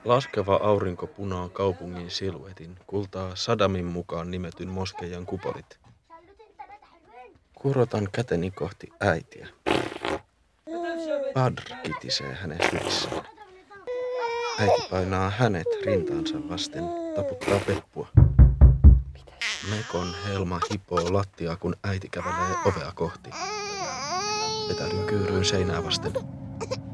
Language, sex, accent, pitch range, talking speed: Finnish, male, native, 85-115 Hz, 85 wpm